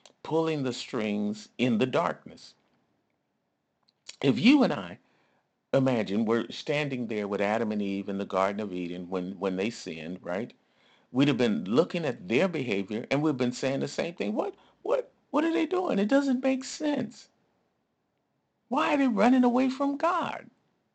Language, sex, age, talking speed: English, male, 50-69, 170 wpm